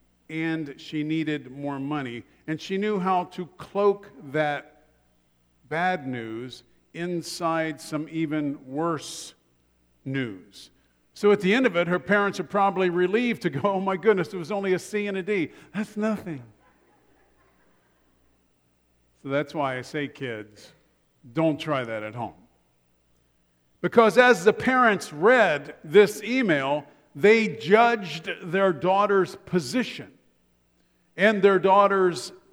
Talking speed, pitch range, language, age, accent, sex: 130 wpm, 125-200 Hz, English, 50-69, American, male